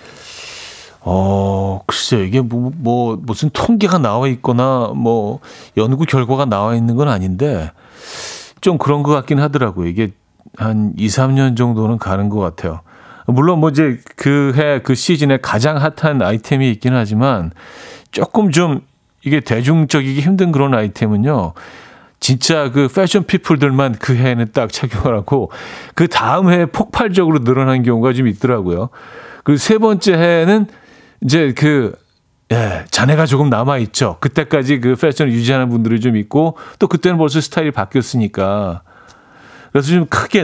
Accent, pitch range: native, 115-155 Hz